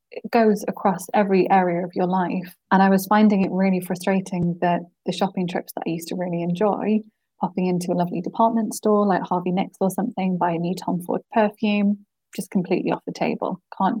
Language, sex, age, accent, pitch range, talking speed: English, female, 20-39, British, 180-205 Hz, 205 wpm